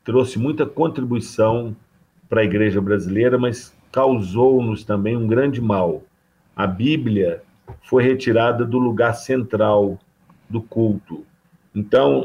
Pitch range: 100-125 Hz